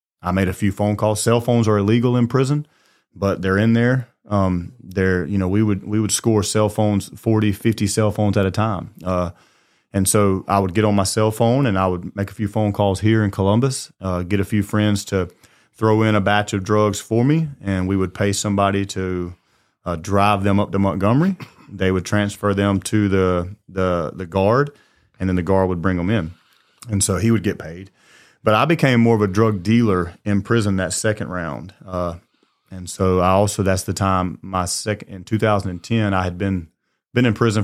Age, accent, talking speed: 30-49, American, 215 wpm